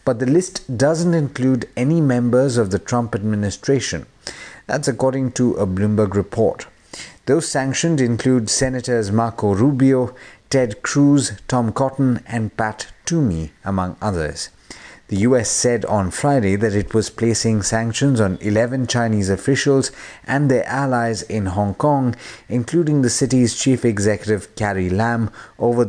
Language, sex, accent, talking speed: English, male, Indian, 140 wpm